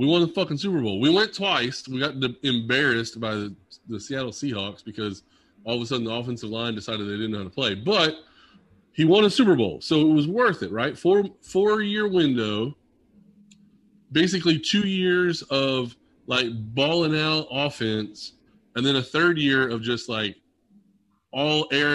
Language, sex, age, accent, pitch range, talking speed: English, male, 20-39, American, 120-180 Hz, 175 wpm